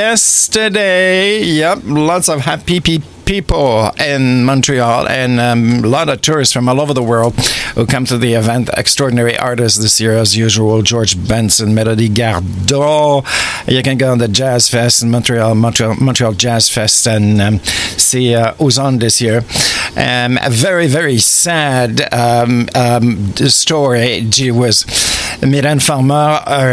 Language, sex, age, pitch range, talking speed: English, male, 60-79, 115-135 Hz, 150 wpm